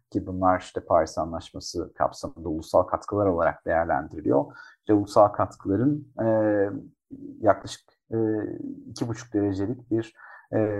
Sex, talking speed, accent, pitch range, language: male, 120 wpm, native, 90-115 Hz, Turkish